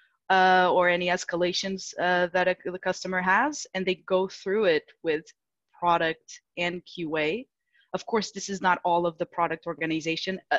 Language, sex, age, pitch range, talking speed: English, female, 20-39, 170-195 Hz, 165 wpm